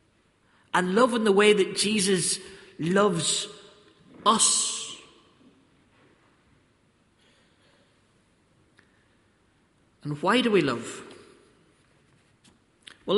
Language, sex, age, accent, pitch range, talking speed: English, male, 40-59, British, 165-215 Hz, 70 wpm